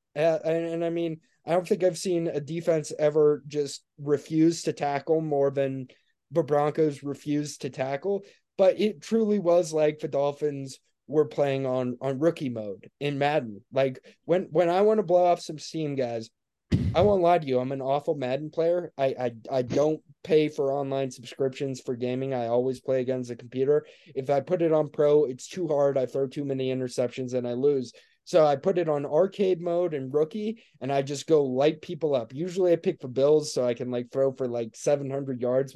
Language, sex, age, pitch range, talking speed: English, male, 20-39, 130-165 Hz, 205 wpm